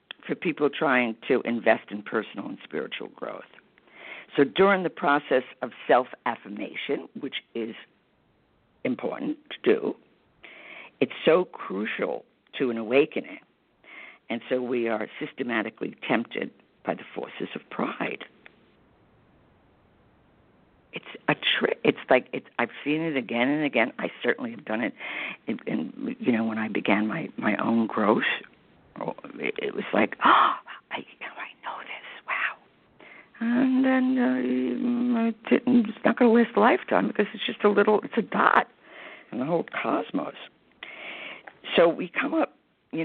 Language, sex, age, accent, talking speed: English, female, 60-79, American, 140 wpm